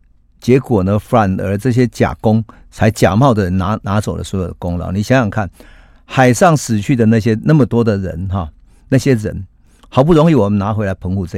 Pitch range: 85-115 Hz